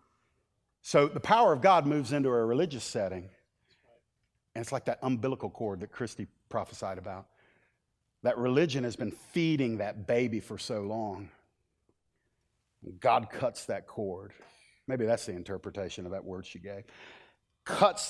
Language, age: English, 50-69